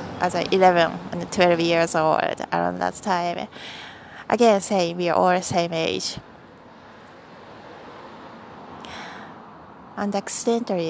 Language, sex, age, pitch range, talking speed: English, female, 20-39, 180-220 Hz, 110 wpm